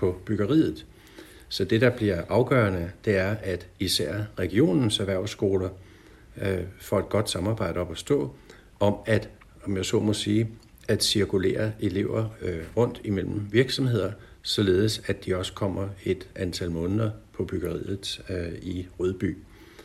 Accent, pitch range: native, 90-110 Hz